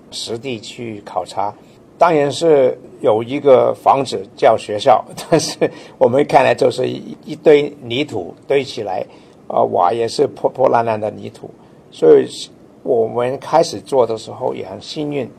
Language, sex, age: Chinese, male, 60-79